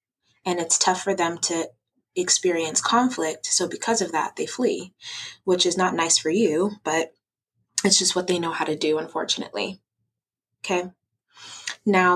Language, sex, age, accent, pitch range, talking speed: English, female, 20-39, American, 160-195 Hz, 160 wpm